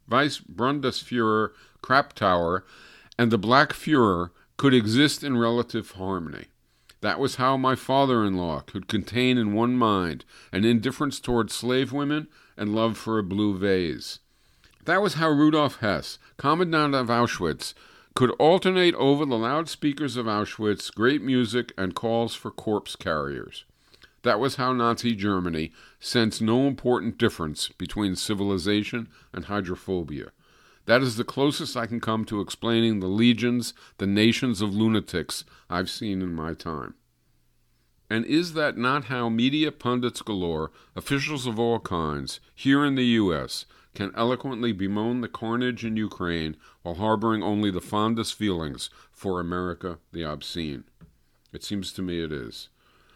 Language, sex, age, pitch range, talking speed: English, male, 50-69, 95-125 Hz, 140 wpm